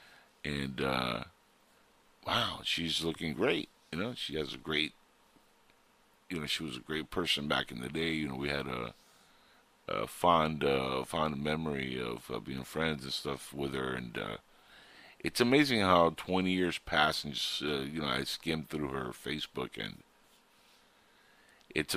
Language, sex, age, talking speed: English, male, 50-69, 170 wpm